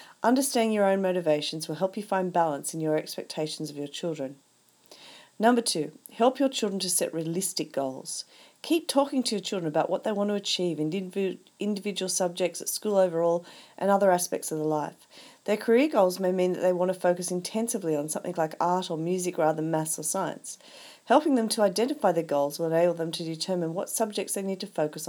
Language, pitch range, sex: English, 160-205 Hz, female